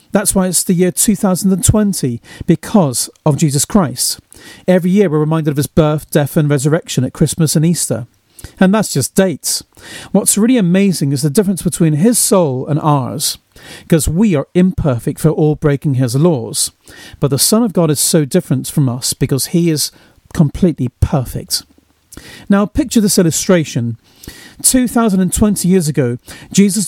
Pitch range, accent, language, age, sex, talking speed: 140-190 Hz, British, English, 40-59, male, 165 wpm